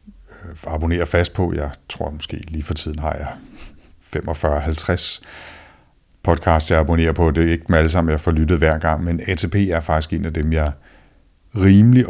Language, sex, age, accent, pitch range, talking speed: Danish, male, 60-79, native, 75-90 Hz, 180 wpm